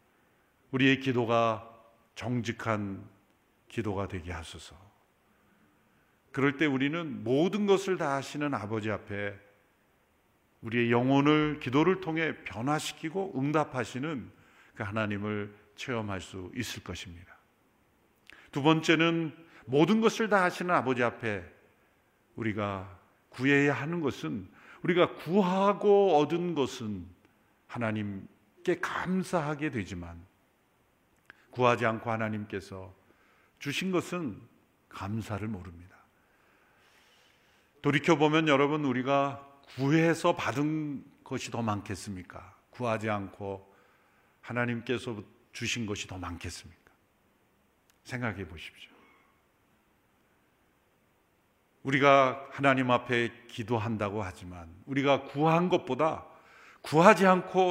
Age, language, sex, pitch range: 50-69, Korean, male, 105-155 Hz